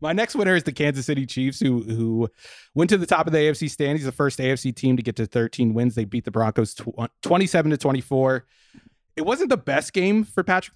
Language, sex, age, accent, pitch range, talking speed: English, male, 30-49, American, 120-150 Hz, 235 wpm